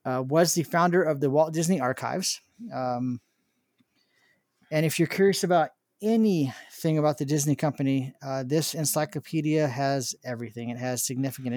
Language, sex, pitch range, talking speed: English, male, 130-160 Hz, 145 wpm